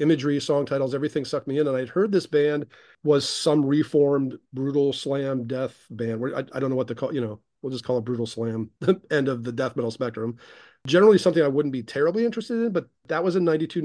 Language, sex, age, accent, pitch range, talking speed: English, male, 40-59, American, 120-150 Hz, 230 wpm